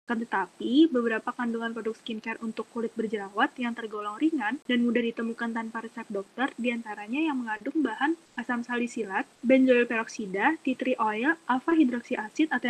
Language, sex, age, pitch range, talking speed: Indonesian, female, 20-39, 230-280 Hz, 145 wpm